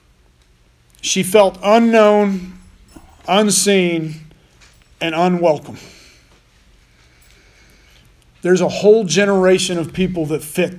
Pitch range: 155-200 Hz